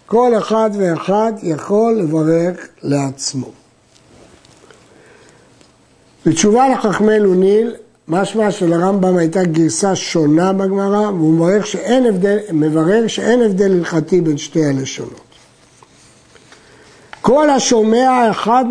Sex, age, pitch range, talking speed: male, 60-79, 180-230 Hz, 85 wpm